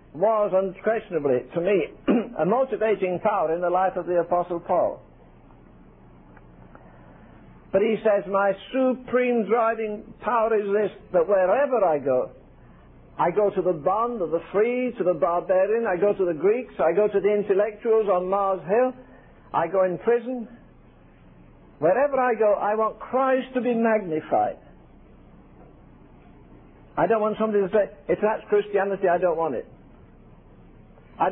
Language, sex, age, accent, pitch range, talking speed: English, male, 60-79, British, 185-230 Hz, 150 wpm